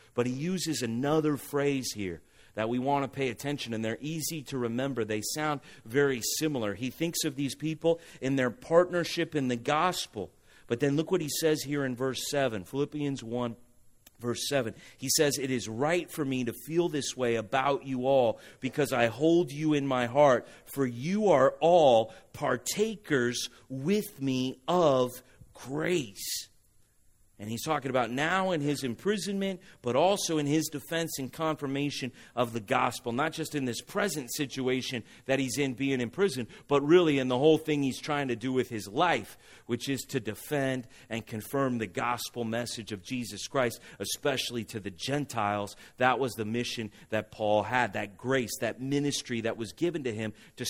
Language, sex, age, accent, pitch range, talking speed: English, male, 40-59, American, 120-155 Hz, 180 wpm